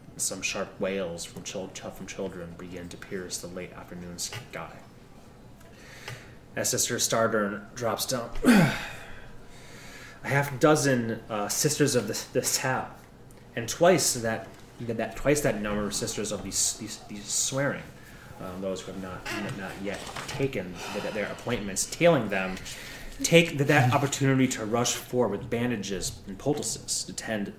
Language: English